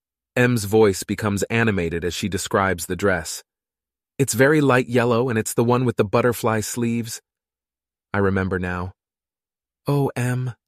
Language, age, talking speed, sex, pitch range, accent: English, 30-49, 145 wpm, male, 95-125 Hz, American